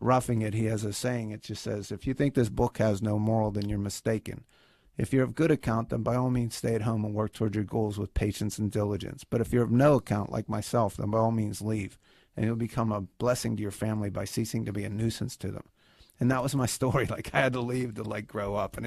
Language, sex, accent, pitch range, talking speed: English, male, American, 105-125 Hz, 270 wpm